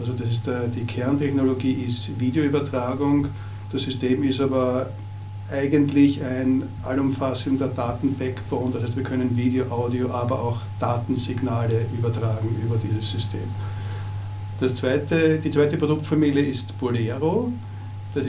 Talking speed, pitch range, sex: 120 wpm, 110-130 Hz, male